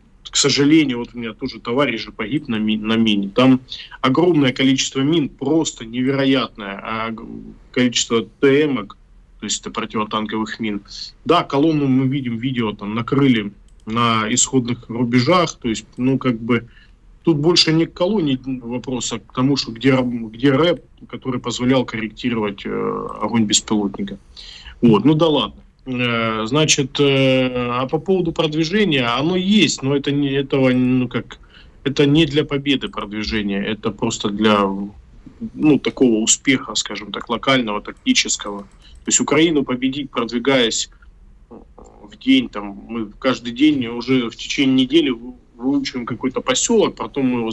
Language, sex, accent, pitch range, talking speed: Russian, male, native, 110-140 Hz, 140 wpm